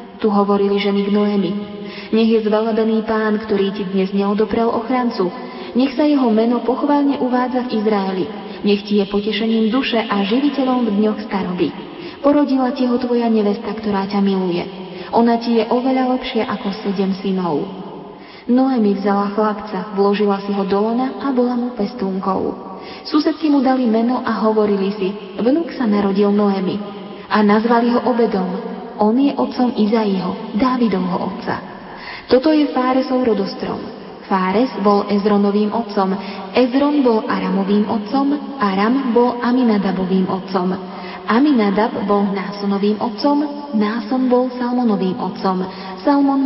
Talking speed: 135 wpm